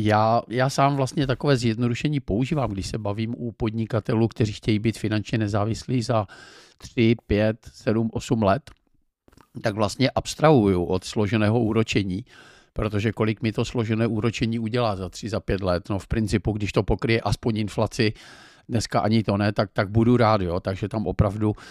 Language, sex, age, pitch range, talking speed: Czech, male, 50-69, 110-125 Hz, 170 wpm